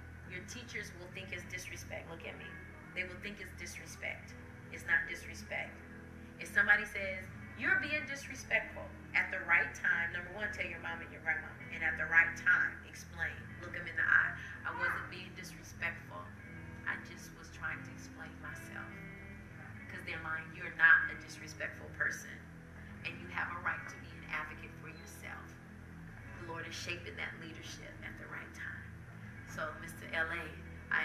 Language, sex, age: English, female, 30-49